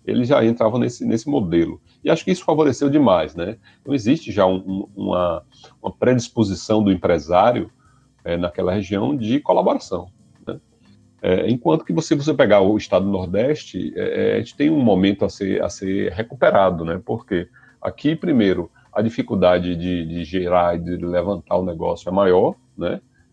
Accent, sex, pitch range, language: Brazilian, male, 90-130 Hz, Portuguese